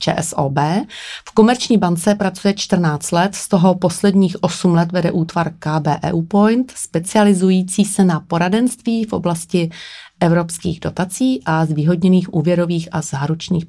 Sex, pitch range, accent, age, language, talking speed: female, 165-200 Hz, native, 30-49, Czech, 130 wpm